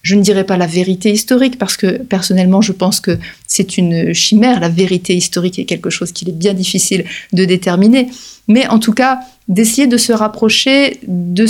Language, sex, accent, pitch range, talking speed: French, female, French, 190-245 Hz, 195 wpm